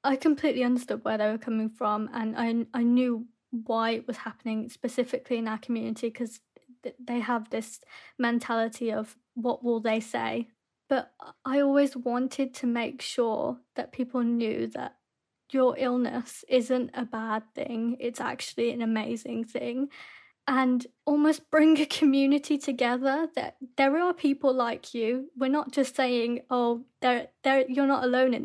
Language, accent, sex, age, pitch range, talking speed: English, British, female, 20-39, 235-275 Hz, 160 wpm